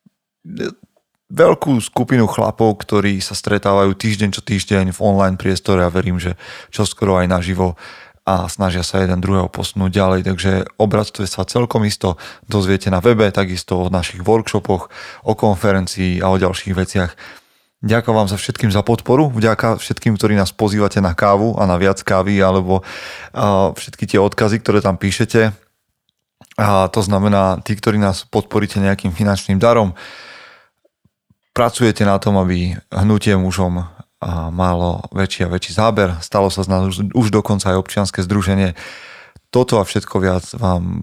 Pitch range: 95-105 Hz